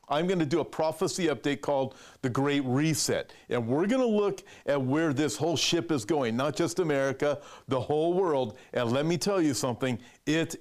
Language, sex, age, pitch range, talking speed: English, male, 50-69, 130-165 Hz, 205 wpm